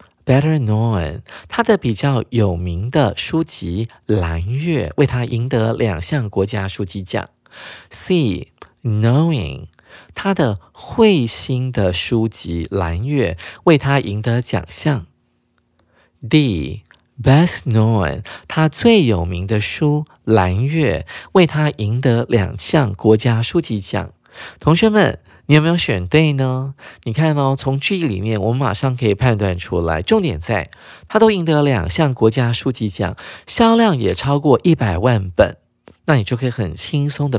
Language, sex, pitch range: Chinese, male, 100-145 Hz